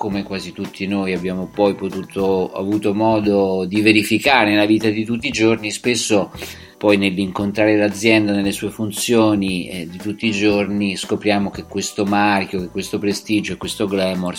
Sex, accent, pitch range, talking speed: male, native, 100-110 Hz, 165 wpm